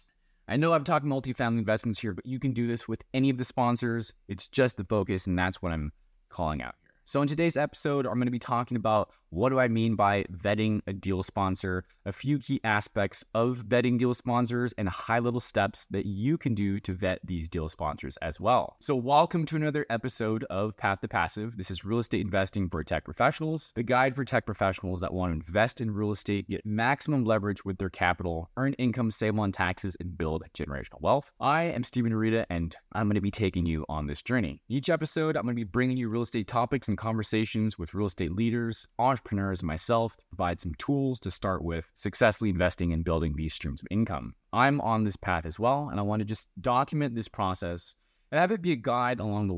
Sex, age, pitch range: male, 20-39, 95-125 Hz